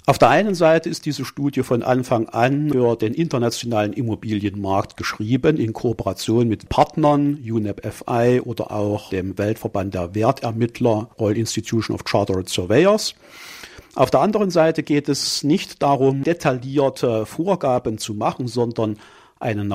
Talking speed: 140 wpm